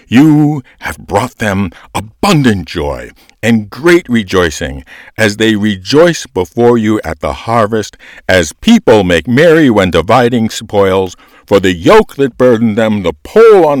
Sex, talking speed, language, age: male, 145 wpm, English, 60-79